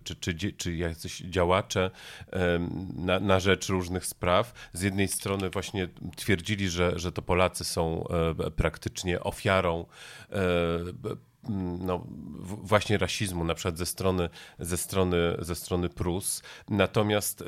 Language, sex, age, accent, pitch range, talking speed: Polish, male, 40-59, native, 90-105 Hz, 105 wpm